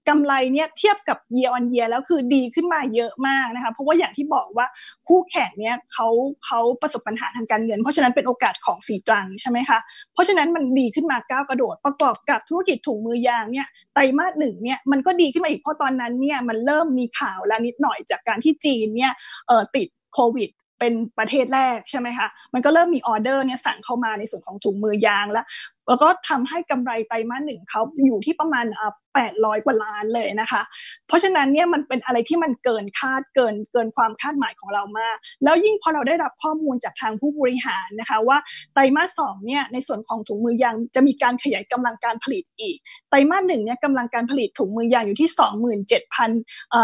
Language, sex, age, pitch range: Thai, female, 20-39, 230-300 Hz